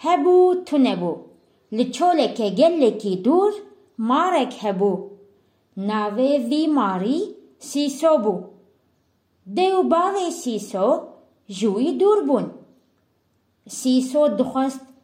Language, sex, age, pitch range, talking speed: English, female, 30-49, 220-315 Hz, 70 wpm